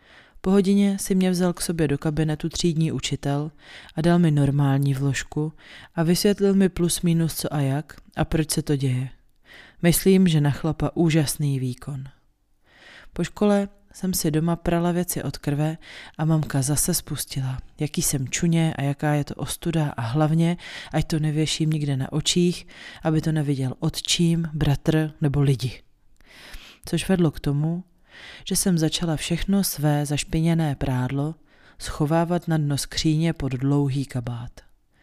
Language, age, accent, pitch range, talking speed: Czech, 30-49, native, 140-170 Hz, 150 wpm